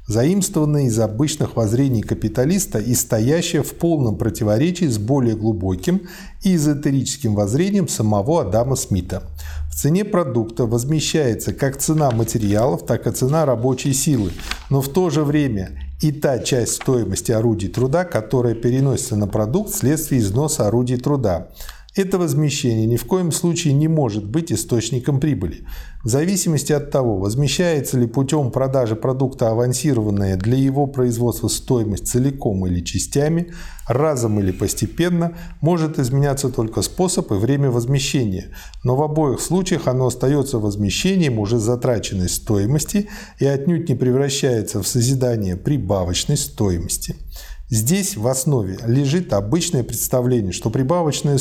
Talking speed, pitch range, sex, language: 135 wpm, 110-150 Hz, male, Russian